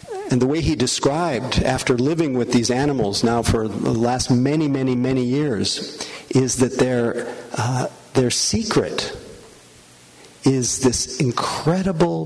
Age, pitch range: 50-69, 120-150 Hz